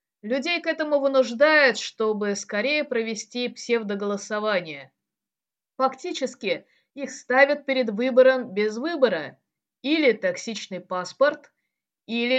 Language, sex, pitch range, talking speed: Russian, female, 215-285 Hz, 90 wpm